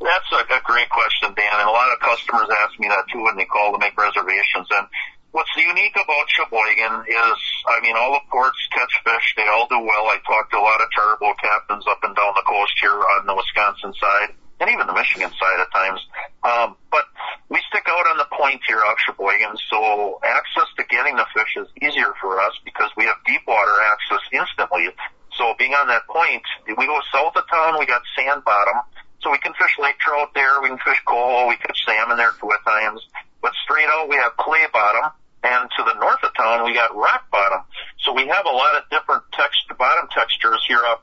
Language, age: English, 50-69